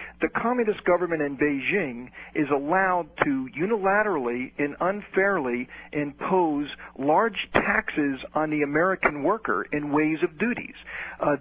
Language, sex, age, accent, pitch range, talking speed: English, male, 50-69, American, 140-180 Hz, 120 wpm